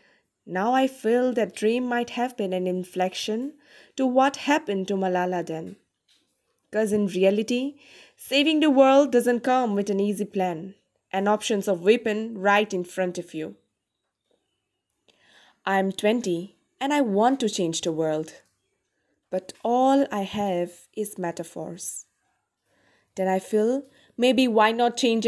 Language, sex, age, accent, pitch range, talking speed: English, female, 20-39, Indian, 195-265 Hz, 140 wpm